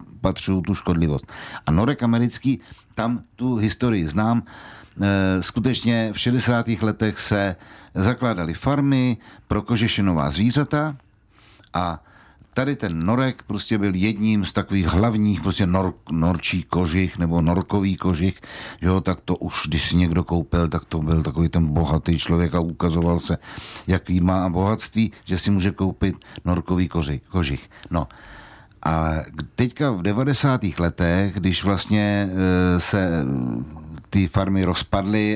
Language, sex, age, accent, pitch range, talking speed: Czech, male, 60-79, native, 85-110 Hz, 135 wpm